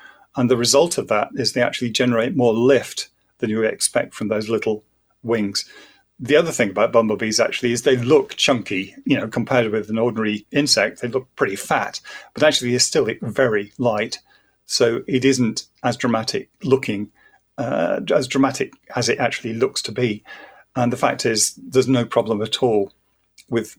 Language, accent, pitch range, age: English, British, 110-130 Hz, 40-59